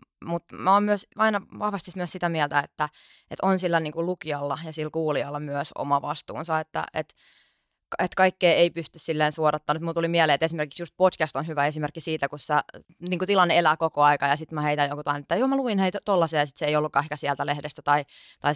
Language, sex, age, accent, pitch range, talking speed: Finnish, female, 20-39, native, 150-180 Hz, 225 wpm